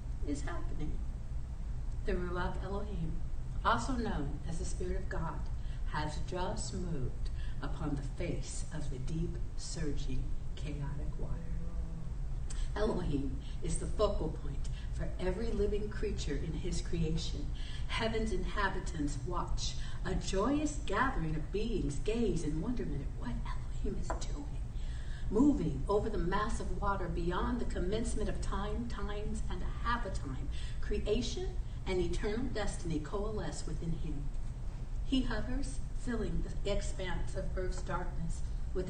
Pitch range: 145-235 Hz